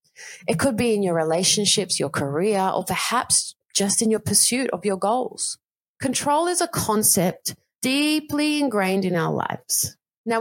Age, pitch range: 30-49, 185-235 Hz